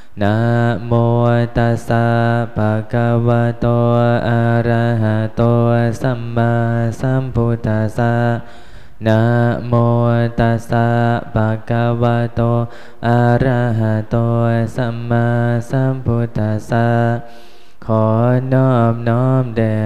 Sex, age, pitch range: male, 20-39, 115-120 Hz